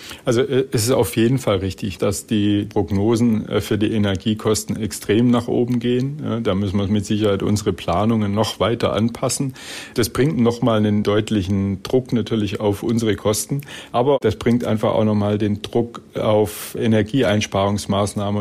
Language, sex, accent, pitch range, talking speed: German, male, German, 105-120 Hz, 155 wpm